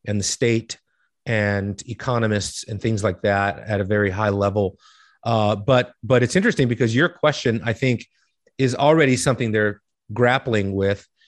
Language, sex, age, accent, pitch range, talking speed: English, male, 30-49, American, 110-130 Hz, 160 wpm